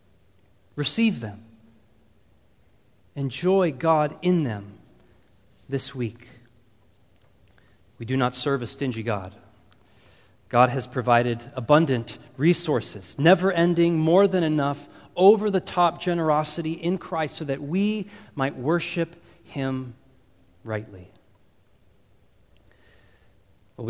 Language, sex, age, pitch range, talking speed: English, male, 30-49, 110-155 Hz, 90 wpm